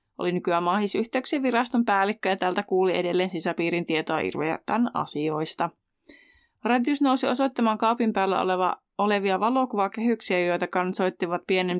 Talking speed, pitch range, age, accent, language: 115 wpm, 180-215 Hz, 20-39, native, Finnish